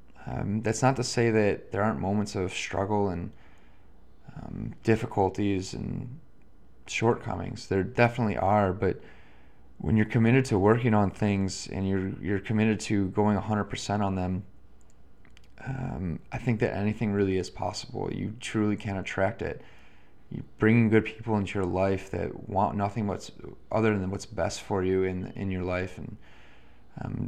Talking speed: 160 wpm